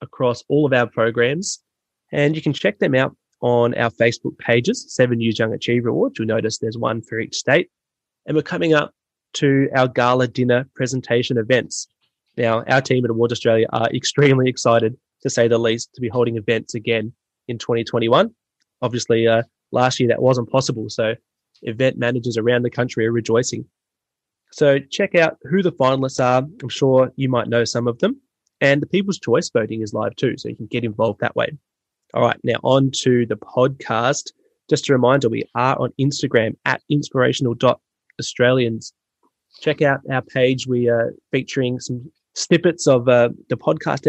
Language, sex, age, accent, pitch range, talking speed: English, male, 20-39, Australian, 120-140 Hz, 180 wpm